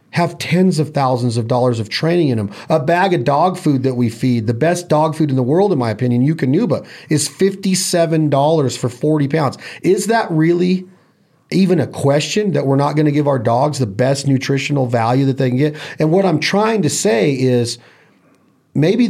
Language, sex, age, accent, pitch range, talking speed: English, male, 40-59, American, 130-170 Hz, 200 wpm